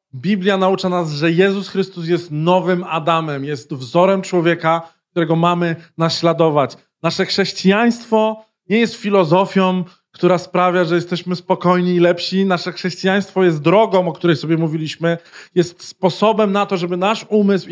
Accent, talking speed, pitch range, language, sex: native, 140 wpm, 140-180 Hz, Polish, male